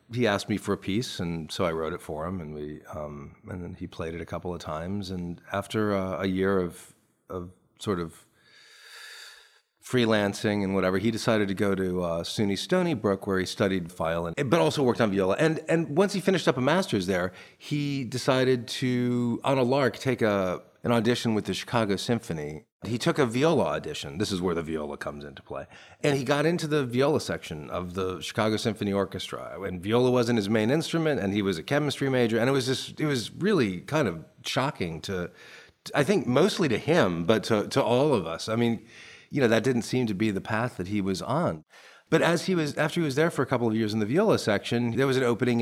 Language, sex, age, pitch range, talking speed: English, male, 40-59, 95-130 Hz, 230 wpm